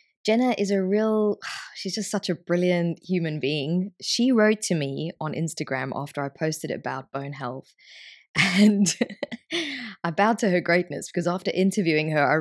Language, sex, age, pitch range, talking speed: English, female, 20-39, 160-205 Hz, 165 wpm